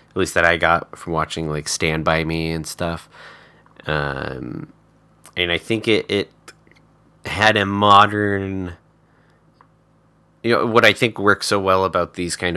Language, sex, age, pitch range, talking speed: English, male, 20-39, 80-100 Hz, 160 wpm